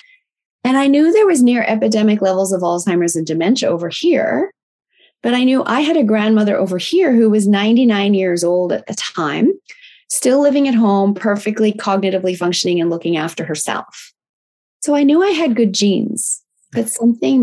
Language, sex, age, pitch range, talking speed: English, female, 30-49, 190-255 Hz, 175 wpm